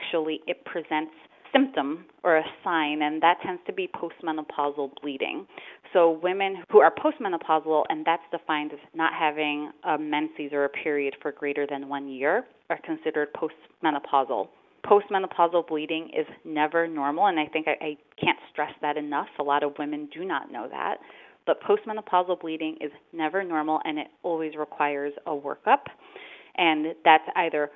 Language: English